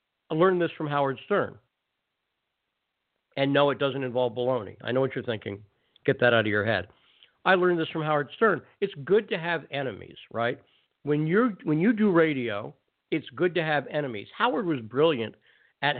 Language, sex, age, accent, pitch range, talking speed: English, male, 50-69, American, 120-175 Hz, 190 wpm